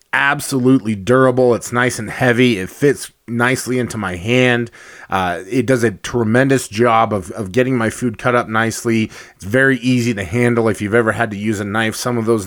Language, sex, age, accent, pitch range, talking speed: English, male, 20-39, American, 110-120 Hz, 200 wpm